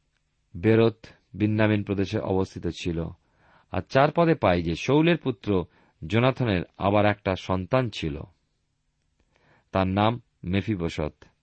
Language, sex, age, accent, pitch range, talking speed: Bengali, male, 40-59, native, 90-115 Hz, 105 wpm